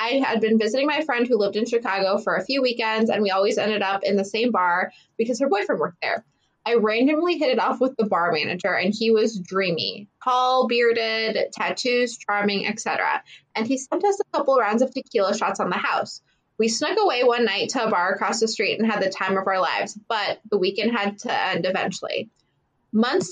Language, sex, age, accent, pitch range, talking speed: English, female, 20-39, American, 210-265 Hz, 220 wpm